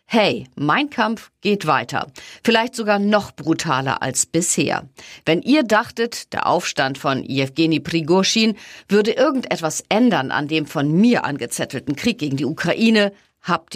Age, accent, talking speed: 50-69, German, 140 wpm